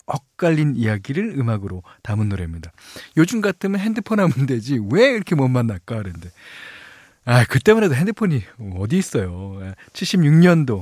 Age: 40-59